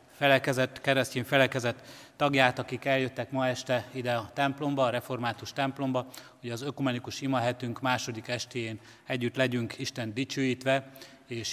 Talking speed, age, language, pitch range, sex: 130 wpm, 30-49, Hungarian, 120-140 Hz, male